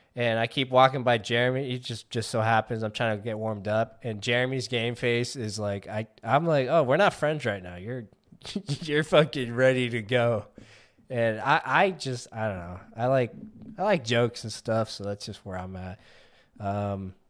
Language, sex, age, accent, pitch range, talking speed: English, male, 20-39, American, 105-130 Hz, 205 wpm